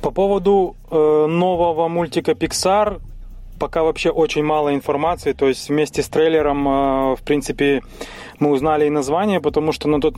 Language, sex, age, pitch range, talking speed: Russian, male, 20-39, 130-155 Hz, 145 wpm